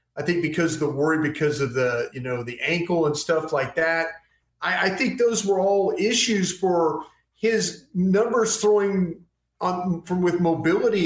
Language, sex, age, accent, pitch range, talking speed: English, male, 40-59, American, 165-210 Hz, 175 wpm